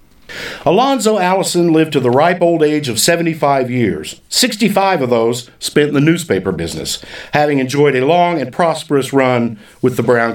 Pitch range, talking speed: 125-170 Hz, 170 wpm